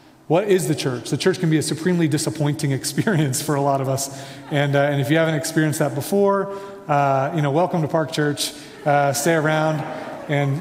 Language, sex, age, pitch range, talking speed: English, male, 30-49, 135-160 Hz, 210 wpm